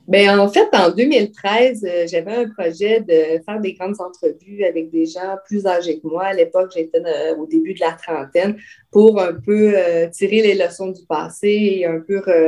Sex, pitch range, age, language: female, 175-210 Hz, 30-49, French